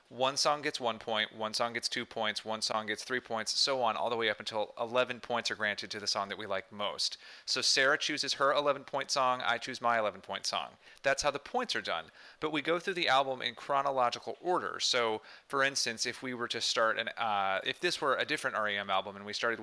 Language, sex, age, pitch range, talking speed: English, male, 30-49, 110-140 Hz, 240 wpm